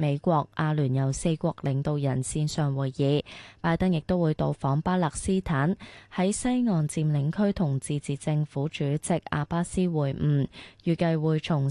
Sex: female